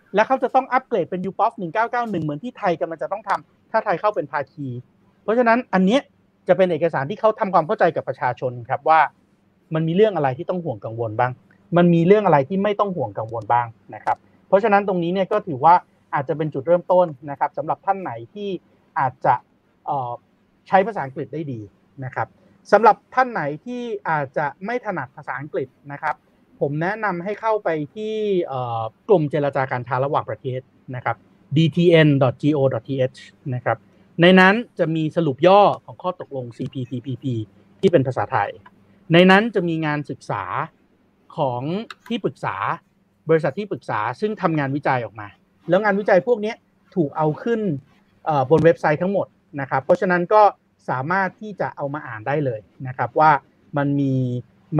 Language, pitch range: Thai, 135-195 Hz